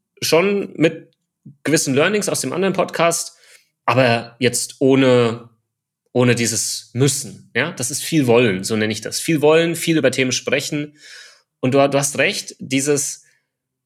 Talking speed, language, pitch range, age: 145 wpm, German, 115-155 Hz, 30-49